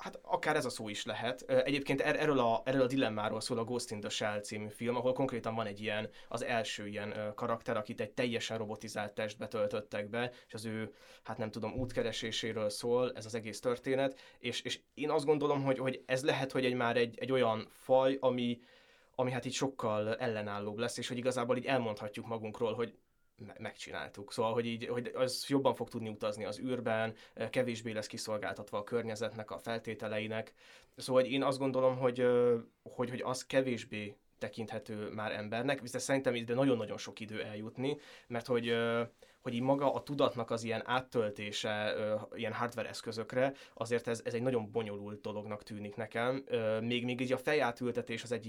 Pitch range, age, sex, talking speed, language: 110-130 Hz, 20-39, male, 180 wpm, Hungarian